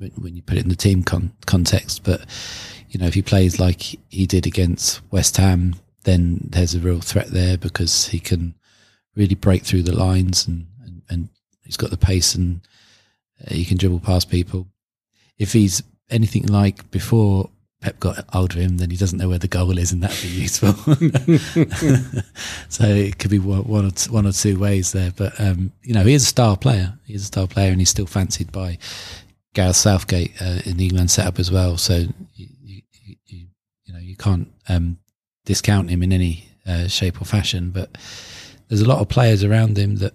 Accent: British